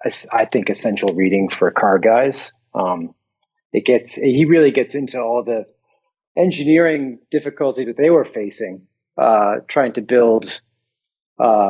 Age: 40-59